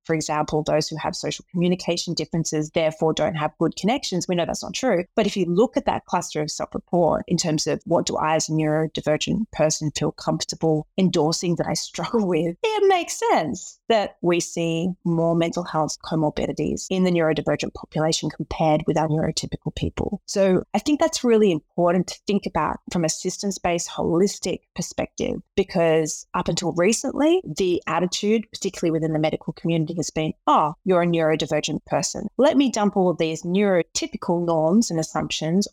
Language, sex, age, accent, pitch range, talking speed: English, female, 30-49, Australian, 160-210 Hz, 175 wpm